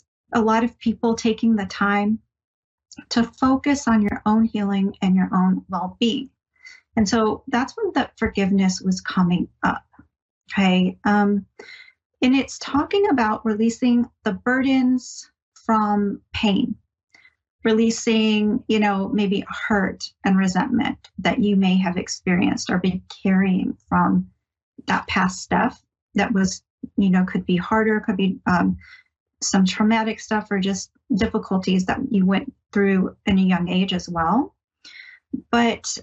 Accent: American